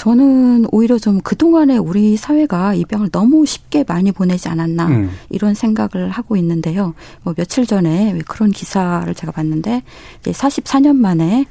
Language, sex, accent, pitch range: Korean, female, native, 175-240 Hz